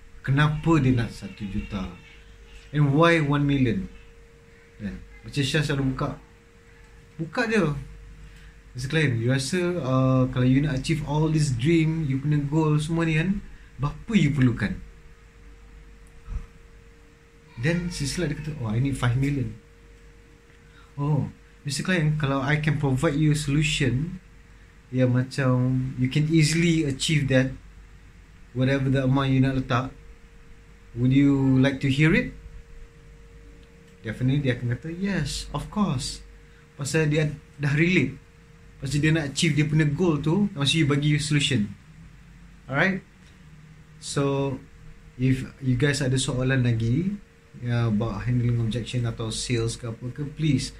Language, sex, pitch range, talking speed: English, male, 115-150 Hz, 135 wpm